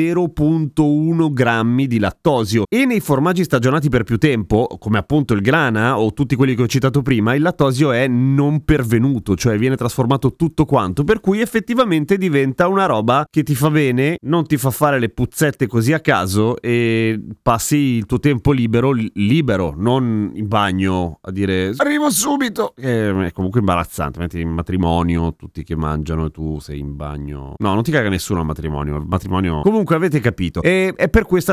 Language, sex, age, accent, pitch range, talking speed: Italian, male, 30-49, native, 100-150 Hz, 180 wpm